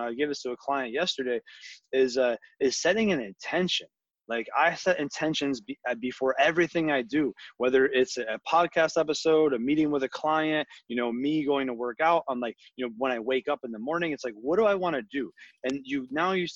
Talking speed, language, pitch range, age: 230 wpm, English, 125-155 Hz, 20-39